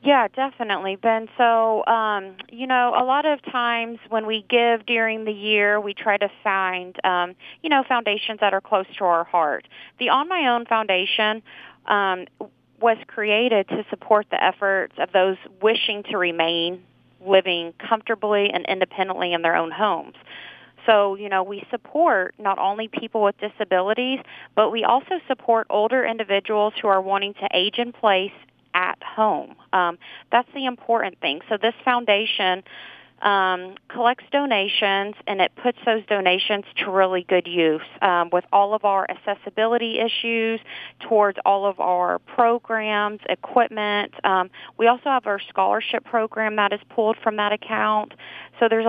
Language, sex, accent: English, female, American